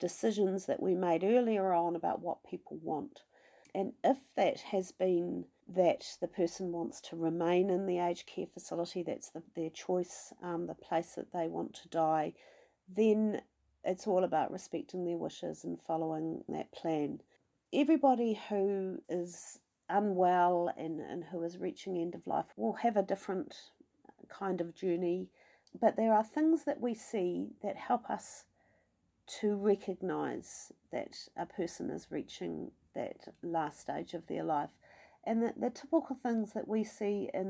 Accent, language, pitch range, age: Australian, English, 170-210 Hz, 40-59